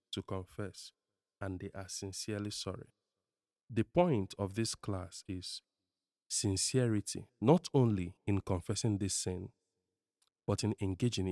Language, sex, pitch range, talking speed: English, male, 95-115 Hz, 120 wpm